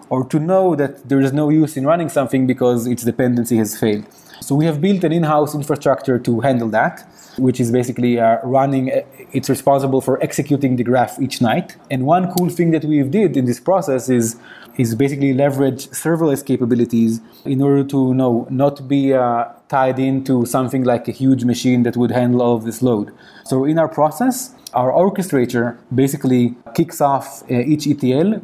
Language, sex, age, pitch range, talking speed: English, male, 20-39, 120-145 Hz, 190 wpm